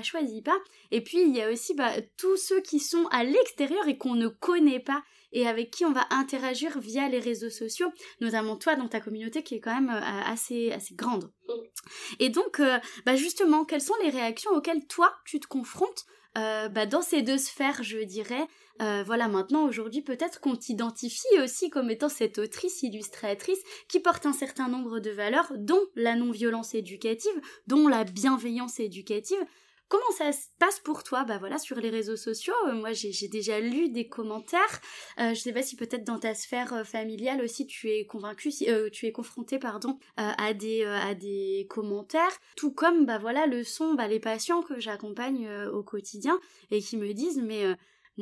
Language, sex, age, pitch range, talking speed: French, female, 20-39, 220-310 Hz, 200 wpm